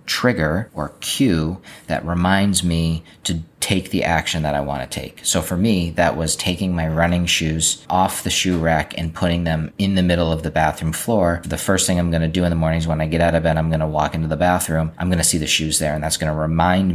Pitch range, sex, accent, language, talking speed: 80-85 Hz, male, American, English, 260 wpm